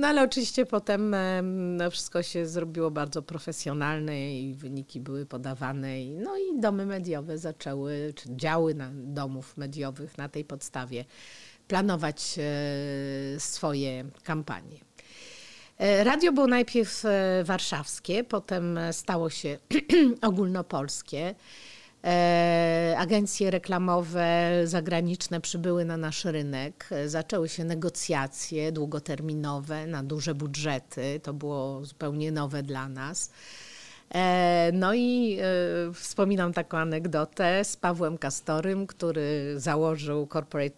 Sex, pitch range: female, 145-185 Hz